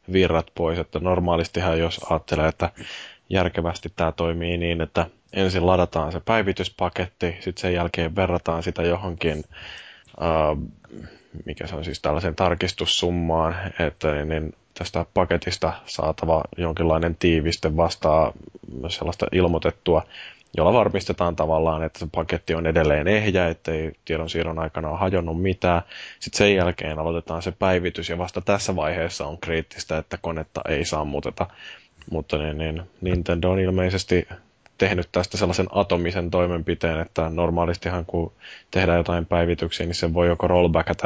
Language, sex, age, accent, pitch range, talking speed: Finnish, male, 20-39, native, 80-90 Hz, 135 wpm